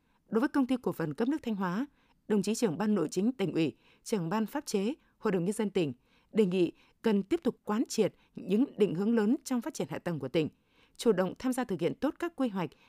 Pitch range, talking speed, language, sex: 180-240 Hz, 255 wpm, Vietnamese, female